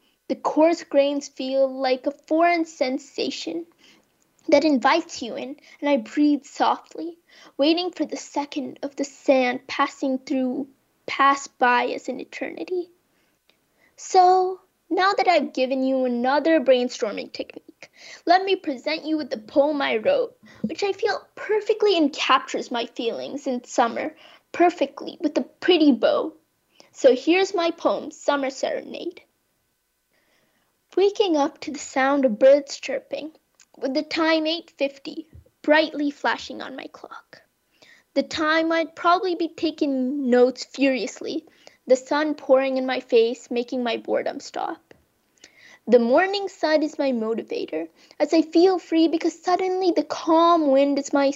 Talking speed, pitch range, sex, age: 140 wpm, 270-330 Hz, female, 10-29